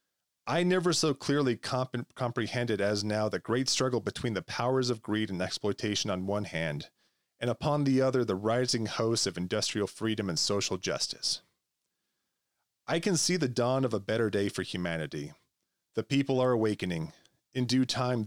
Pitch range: 105-130 Hz